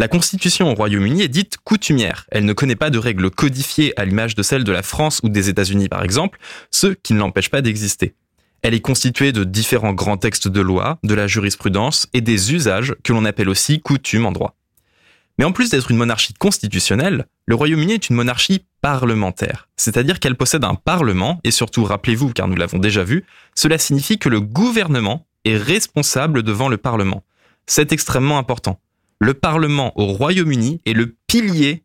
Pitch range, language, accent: 105-150 Hz, French, French